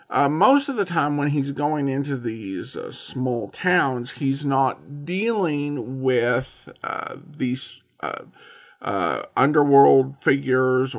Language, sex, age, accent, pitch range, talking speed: English, male, 50-69, American, 120-155 Hz, 125 wpm